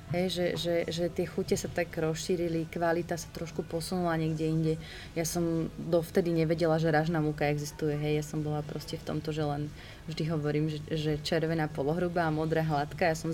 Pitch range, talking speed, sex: 165-195 Hz, 190 wpm, female